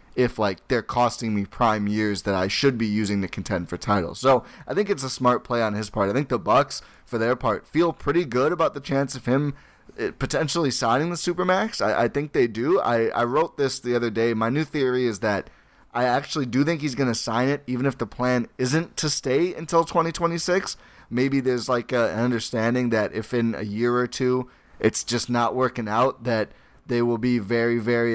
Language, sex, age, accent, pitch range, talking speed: English, male, 20-39, American, 115-135 Hz, 220 wpm